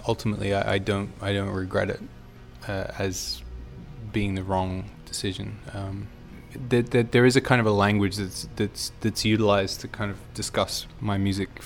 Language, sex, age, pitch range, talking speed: English, male, 20-39, 95-110 Hz, 175 wpm